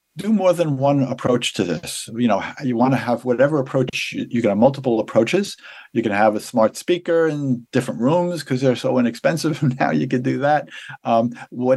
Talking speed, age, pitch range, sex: 210 wpm, 50-69, 115-140 Hz, male